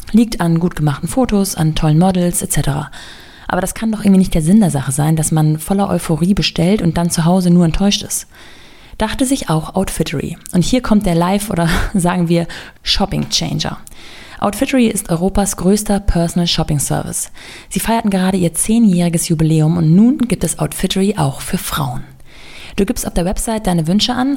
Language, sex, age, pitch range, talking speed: German, female, 20-39, 165-205 Hz, 185 wpm